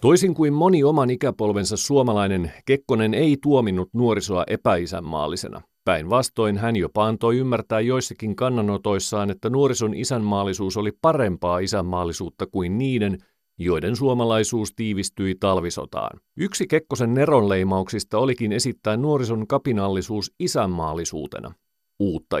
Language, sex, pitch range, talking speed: Finnish, male, 95-130 Hz, 105 wpm